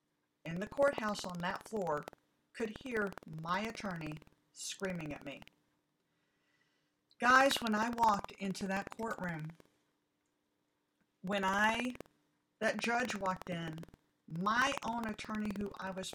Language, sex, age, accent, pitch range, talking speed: English, female, 50-69, American, 165-205 Hz, 120 wpm